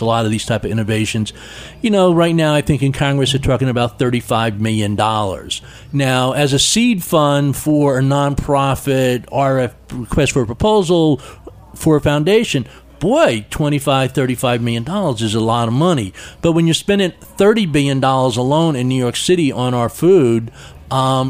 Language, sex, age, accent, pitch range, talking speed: English, male, 50-69, American, 115-150 Hz, 175 wpm